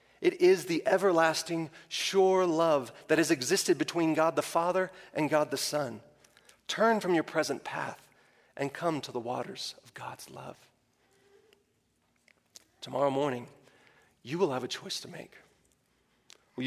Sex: male